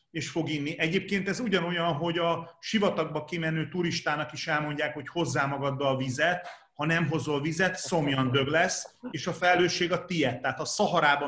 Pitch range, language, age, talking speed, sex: 145-170 Hz, Hungarian, 30-49, 175 wpm, male